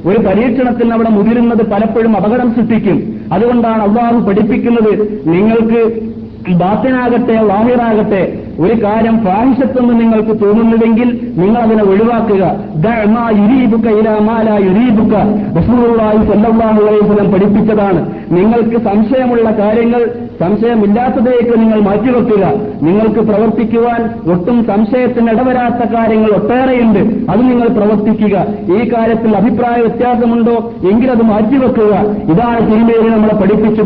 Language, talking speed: Malayalam, 95 wpm